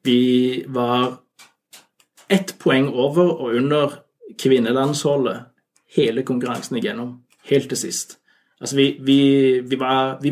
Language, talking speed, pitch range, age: Danish, 115 wpm, 125-160 Hz, 30-49